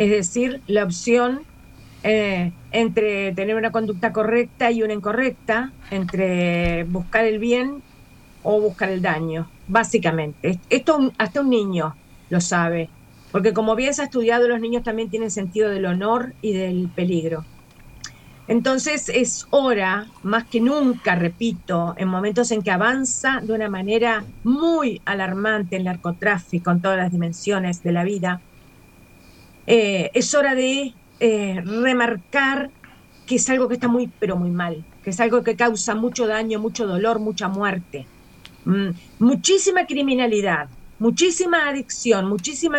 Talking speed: 145 wpm